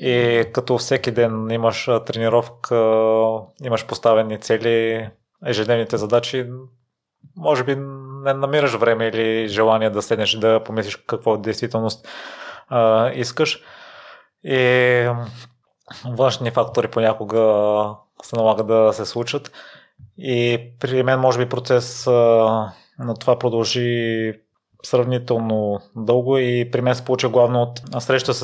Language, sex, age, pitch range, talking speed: Bulgarian, male, 20-39, 110-125 Hz, 115 wpm